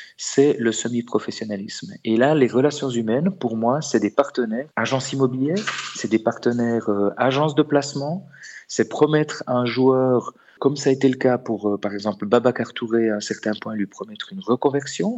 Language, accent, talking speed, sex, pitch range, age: French, French, 185 wpm, male, 110-135 Hz, 40-59